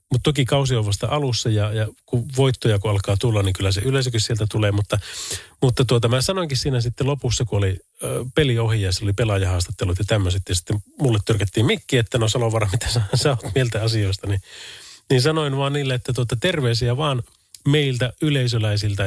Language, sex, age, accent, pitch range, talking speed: Finnish, male, 30-49, native, 100-135 Hz, 185 wpm